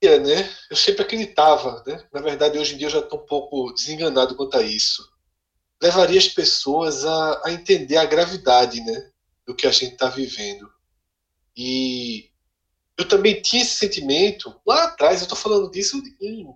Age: 20-39